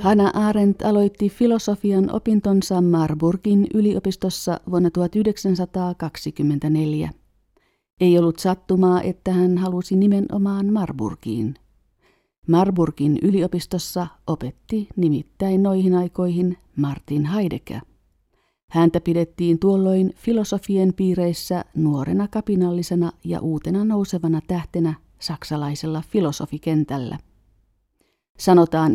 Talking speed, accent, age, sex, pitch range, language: 80 wpm, native, 50-69, female, 160-200 Hz, Finnish